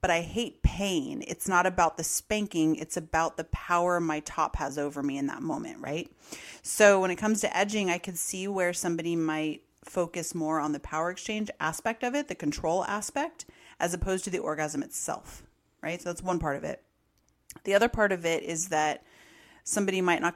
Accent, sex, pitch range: American, female, 155-185 Hz